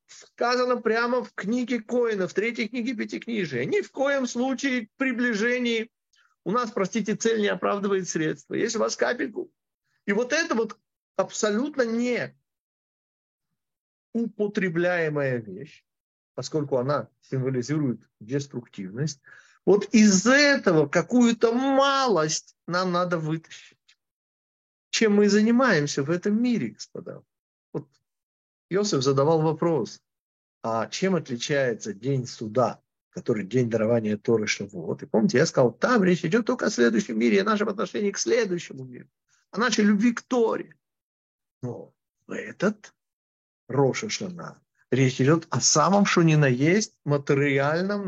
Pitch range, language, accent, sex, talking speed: 145-230 Hz, Russian, native, male, 125 wpm